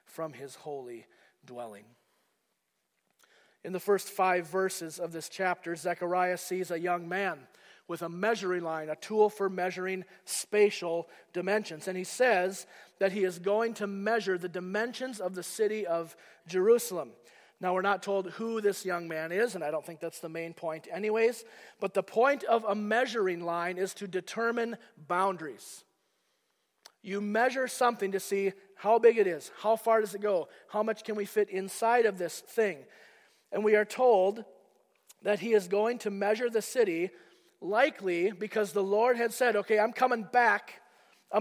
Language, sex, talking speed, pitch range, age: English, male, 170 wpm, 185-230 Hz, 40-59